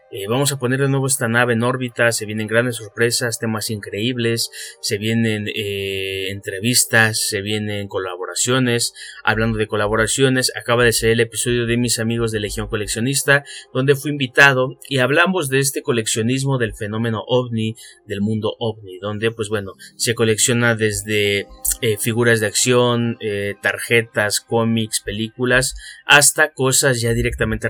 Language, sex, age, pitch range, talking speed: Spanish, male, 30-49, 110-125 Hz, 150 wpm